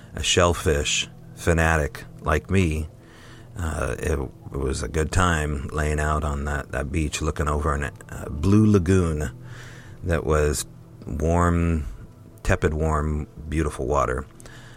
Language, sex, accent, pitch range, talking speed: English, male, American, 80-105 Hz, 130 wpm